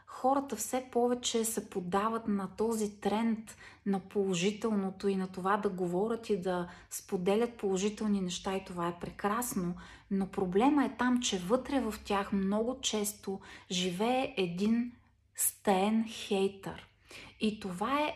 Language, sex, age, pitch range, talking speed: Bulgarian, female, 30-49, 195-235 Hz, 135 wpm